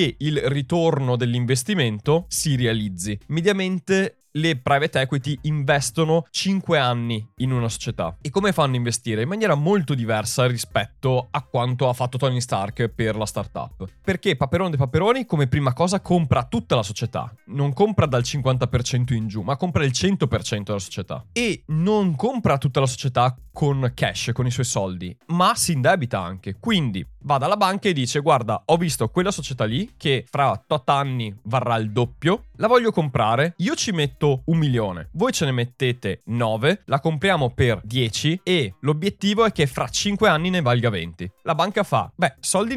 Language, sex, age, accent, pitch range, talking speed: Italian, male, 20-39, native, 120-170 Hz, 175 wpm